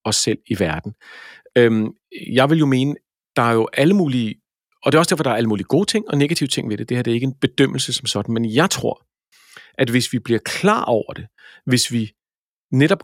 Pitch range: 110-145 Hz